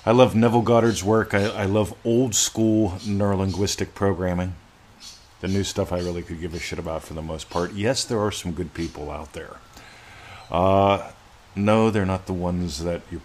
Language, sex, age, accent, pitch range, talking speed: English, male, 40-59, American, 80-105 Hz, 190 wpm